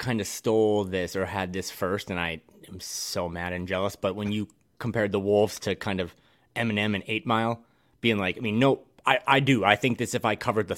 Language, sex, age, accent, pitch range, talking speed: English, male, 30-49, American, 105-130 Hz, 240 wpm